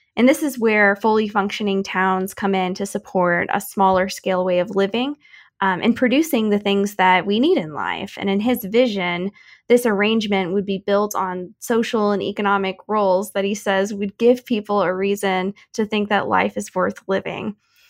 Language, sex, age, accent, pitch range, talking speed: English, female, 10-29, American, 190-215 Hz, 190 wpm